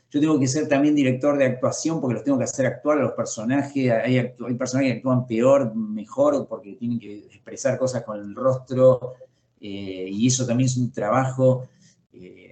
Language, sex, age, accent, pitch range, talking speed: Spanish, male, 40-59, Argentinian, 120-150 Hz, 195 wpm